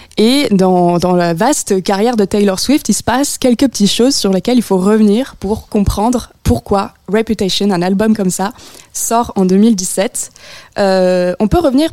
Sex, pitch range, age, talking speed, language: female, 185-235 Hz, 20-39, 185 wpm, French